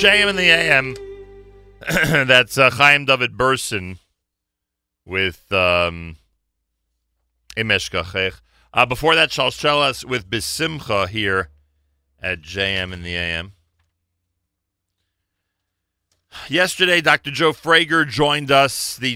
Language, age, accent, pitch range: English, 40-59, American, 90-120 Hz